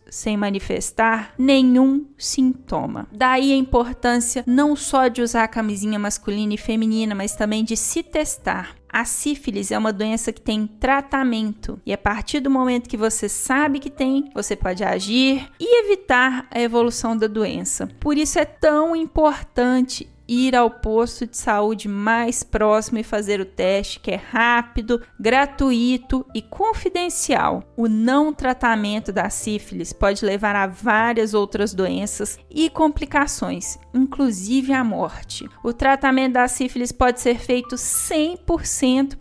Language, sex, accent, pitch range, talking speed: Portuguese, female, Brazilian, 220-280 Hz, 145 wpm